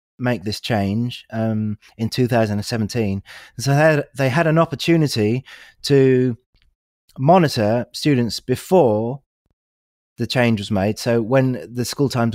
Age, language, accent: 30-49, English, British